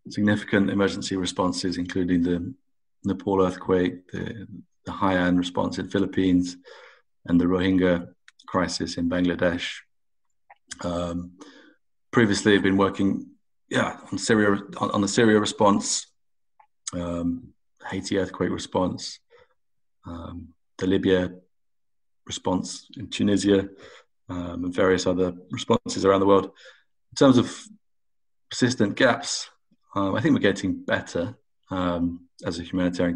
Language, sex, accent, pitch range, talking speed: English, male, British, 90-100 Hz, 115 wpm